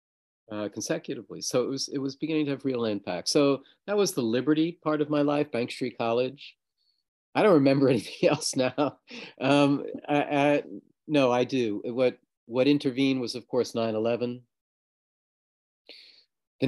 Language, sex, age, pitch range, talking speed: English, male, 40-59, 110-140 Hz, 160 wpm